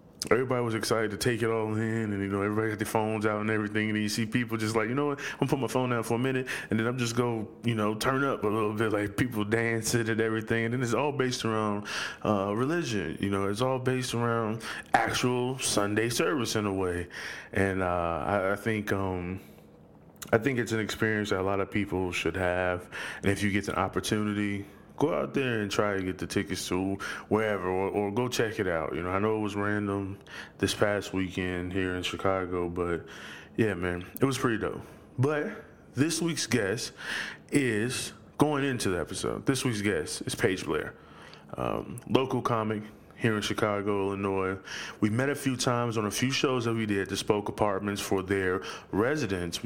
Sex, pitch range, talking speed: male, 95-115 Hz, 215 wpm